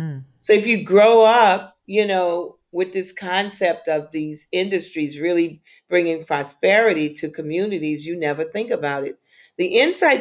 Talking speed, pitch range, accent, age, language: 145 wpm, 160-215 Hz, American, 50-69, English